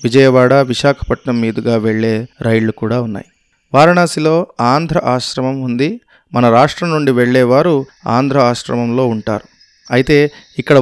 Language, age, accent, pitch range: Telugu, 30-49, native, 120-145 Hz